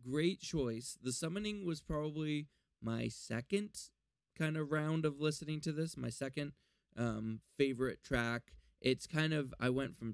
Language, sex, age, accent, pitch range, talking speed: English, male, 20-39, American, 115-145 Hz, 155 wpm